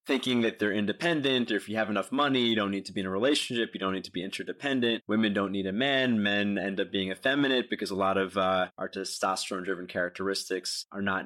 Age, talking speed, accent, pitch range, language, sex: 20-39, 235 wpm, American, 95-115 Hz, English, male